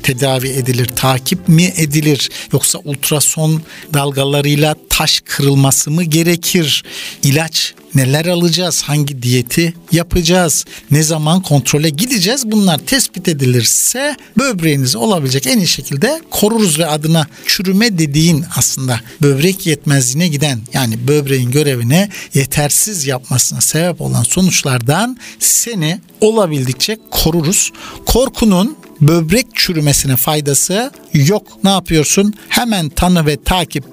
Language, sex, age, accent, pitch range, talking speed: Turkish, male, 60-79, native, 145-210 Hz, 110 wpm